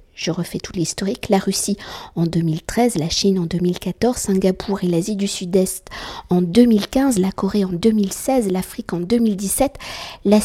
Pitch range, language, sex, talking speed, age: 180-220 Hz, French, female, 155 wpm, 50-69